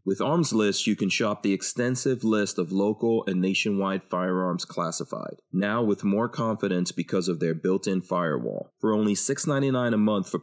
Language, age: English, 30-49